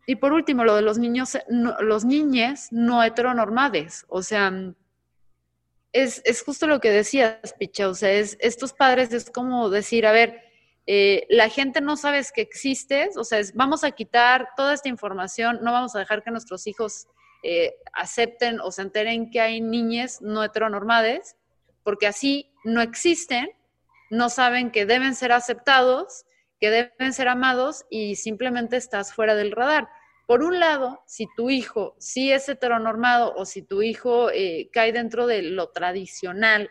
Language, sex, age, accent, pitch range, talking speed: Spanish, female, 30-49, Mexican, 205-250 Hz, 170 wpm